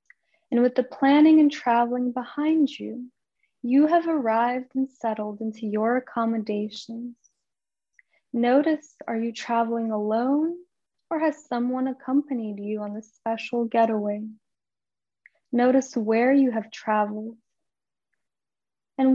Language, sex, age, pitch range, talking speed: English, female, 10-29, 225-270 Hz, 115 wpm